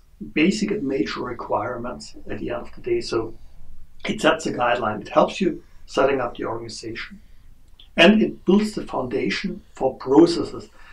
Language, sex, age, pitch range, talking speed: English, male, 60-79, 120-170 Hz, 160 wpm